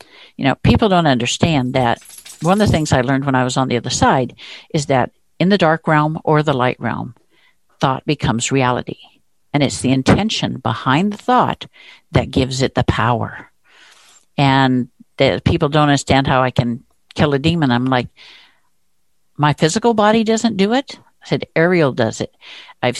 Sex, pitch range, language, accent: female, 125-165 Hz, English, American